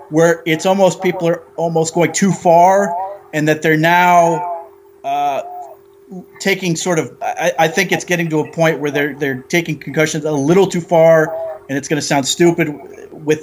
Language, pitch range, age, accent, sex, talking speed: English, 140-175 Hz, 30-49, American, male, 185 wpm